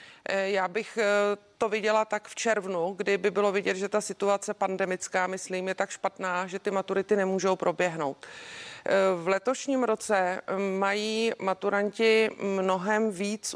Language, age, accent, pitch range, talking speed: Czech, 40-59, native, 190-220 Hz, 135 wpm